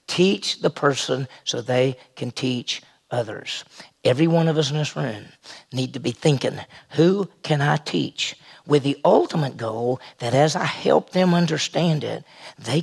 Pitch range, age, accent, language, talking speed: 130-165 Hz, 50-69, American, English, 165 wpm